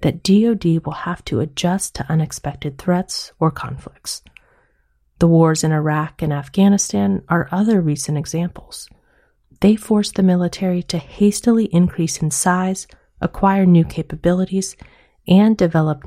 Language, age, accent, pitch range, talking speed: English, 30-49, American, 155-200 Hz, 130 wpm